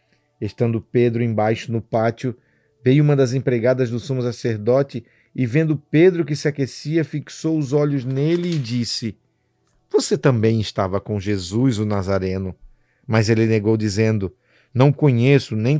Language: Portuguese